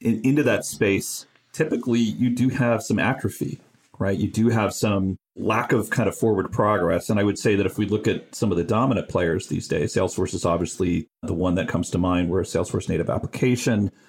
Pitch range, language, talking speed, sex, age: 95-115 Hz, English, 215 wpm, male, 40-59